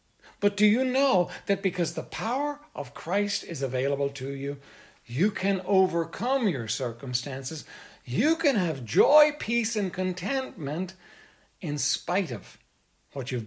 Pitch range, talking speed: 145-210 Hz, 140 wpm